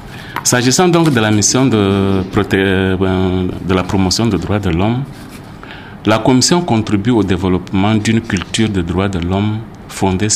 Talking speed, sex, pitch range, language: 145 wpm, male, 90-110 Hz, French